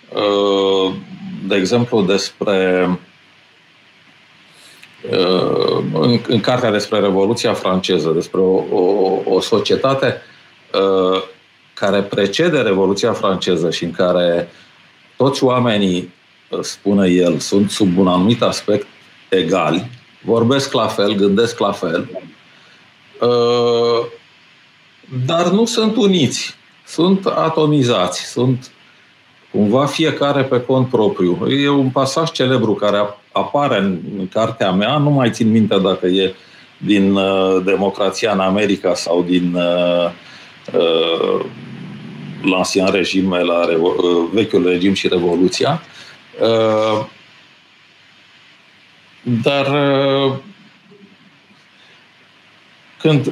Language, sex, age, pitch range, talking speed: Romanian, male, 50-69, 95-140 Hz, 85 wpm